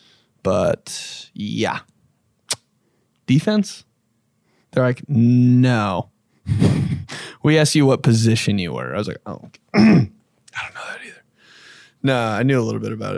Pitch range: 120-135 Hz